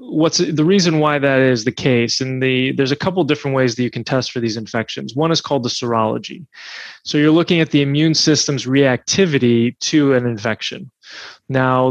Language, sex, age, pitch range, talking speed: English, male, 20-39, 125-150 Hz, 190 wpm